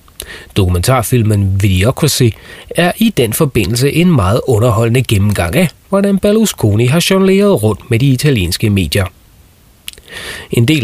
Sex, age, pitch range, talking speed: male, 30-49, 100-155 Hz, 120 wpm